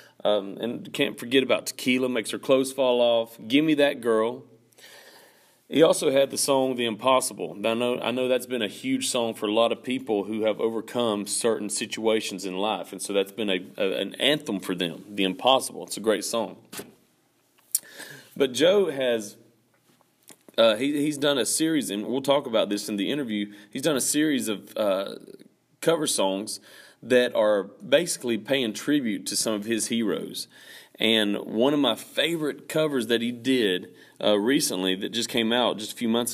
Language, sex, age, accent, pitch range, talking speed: English, male, 40-59, American, 105-130 Hz, 185 wpm